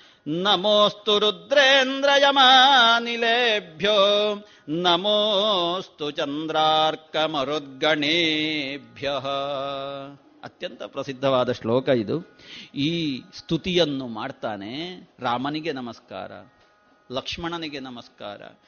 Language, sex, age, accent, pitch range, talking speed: Kannada, male, 50-69, native, 140-210 Hz, 50 wpm